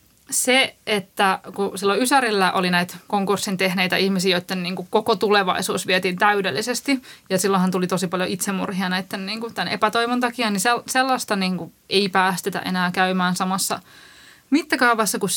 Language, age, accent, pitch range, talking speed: Finnish, 20-39, native, 185-240 Hz, 140 wpm